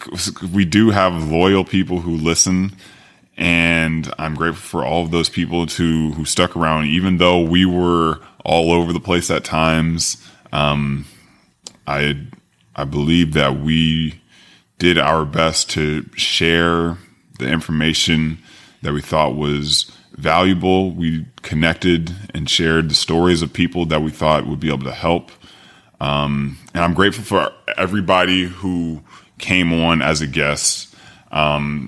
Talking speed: 145 wpm